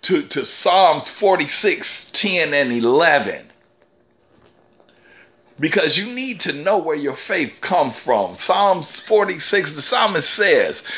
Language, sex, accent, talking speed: English, male, American, 120 wpm